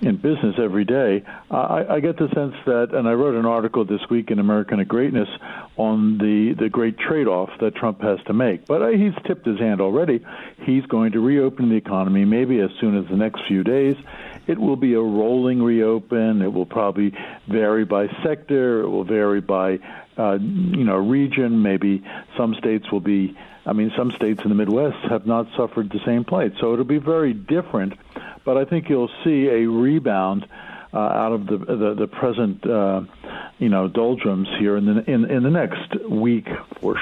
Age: 60-79